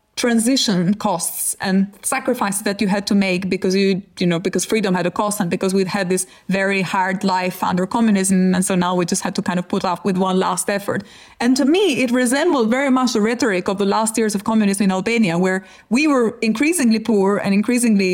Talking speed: 220 wpm